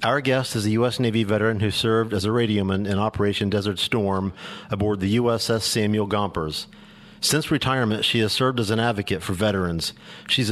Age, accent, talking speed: 50-69, American, 185 wpm